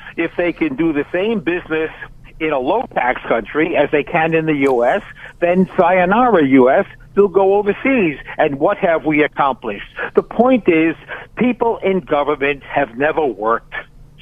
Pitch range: 145-195 Hz